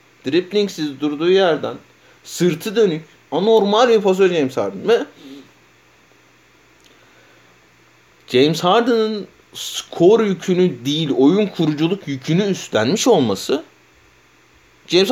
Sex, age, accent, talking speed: male, 30-49, native, 85 wpm